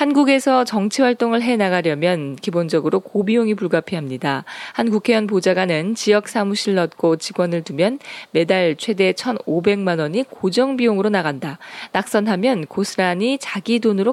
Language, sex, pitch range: Korean, female, 180-240 Hz